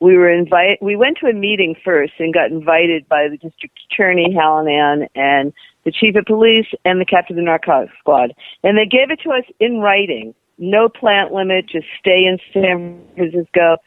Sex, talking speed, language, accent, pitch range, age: female, 200 wpm, English, American, 170-220 Hz, 50-69